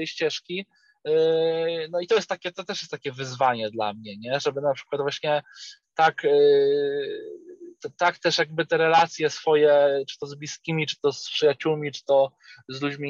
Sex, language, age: male, Polish, 20-39